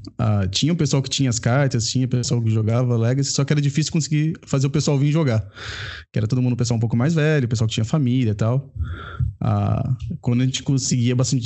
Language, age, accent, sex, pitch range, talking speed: Portuguese, 20-39, Brazilian, male, 115-140 Hz, 245 wpm